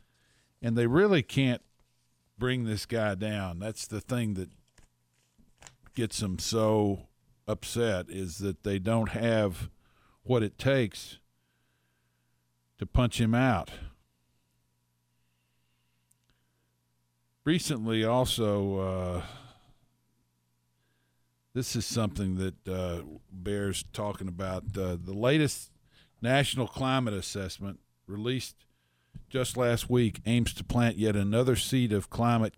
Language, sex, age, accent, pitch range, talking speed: English, male, 50-69, American, 85-120 Hz, 105 wpm